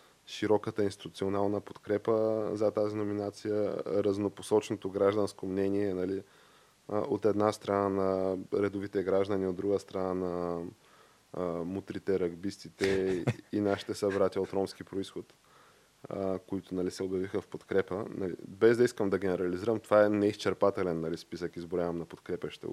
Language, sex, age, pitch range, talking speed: Bulgarian, male, 20-39, 95-105 Hz, 125 wpm